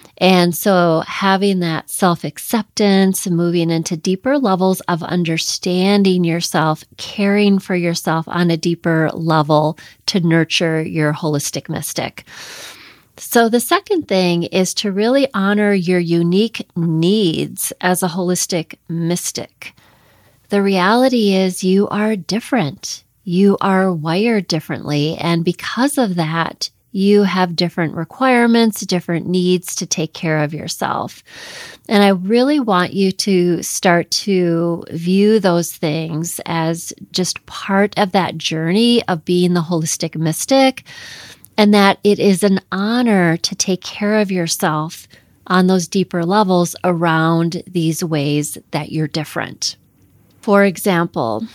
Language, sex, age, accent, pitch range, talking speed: English, female, 30-49, American, 165-200 Hz, 130 wpm